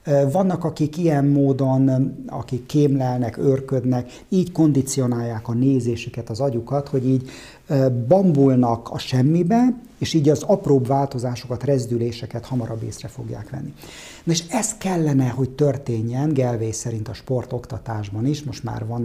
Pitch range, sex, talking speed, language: 115-160 Hz, male, 130 wpm, Hungarian